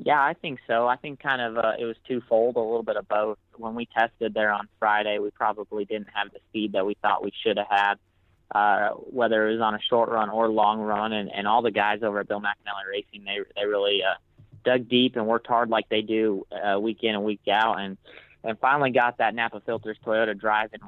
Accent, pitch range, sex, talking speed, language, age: American, 105-115 Hz, male, 240 wpm, English, 20-39